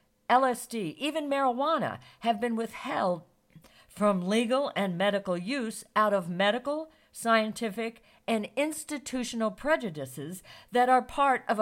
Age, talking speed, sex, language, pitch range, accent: 50-69, 115 wpm, female, English, 180-255 Hz, American